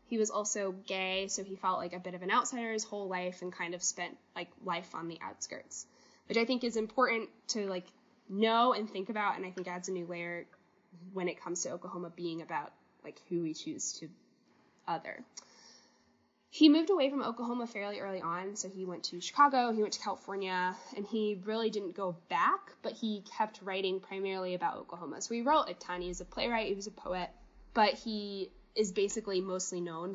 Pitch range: 185-225 Hz